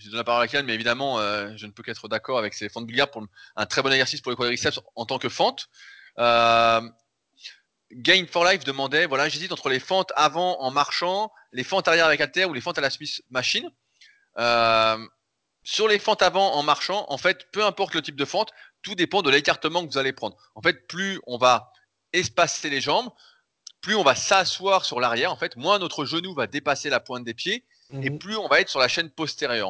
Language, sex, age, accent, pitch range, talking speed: French, male, 20-39, French, 120-175 Hz, 230 wpm